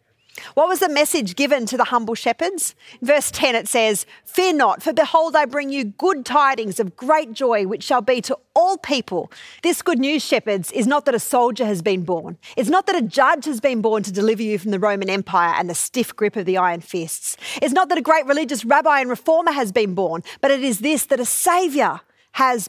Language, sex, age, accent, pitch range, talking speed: English, female, 40-59, Australian, 215-285 Hz, 225 wpm